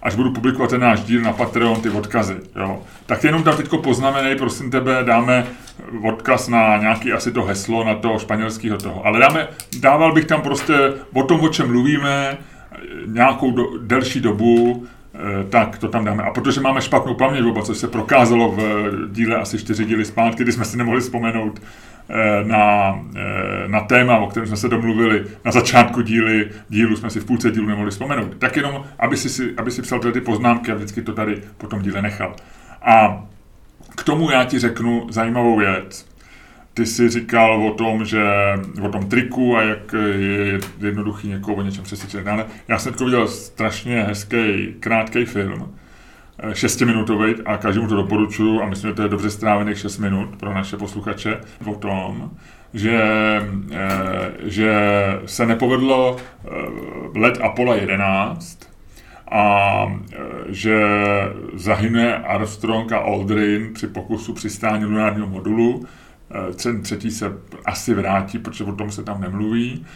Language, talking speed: Czech, 155 wpm